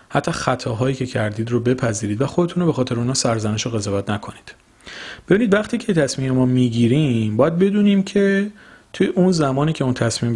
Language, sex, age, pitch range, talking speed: Persian, male, 40-59, 115-160 Hz, 180 wpm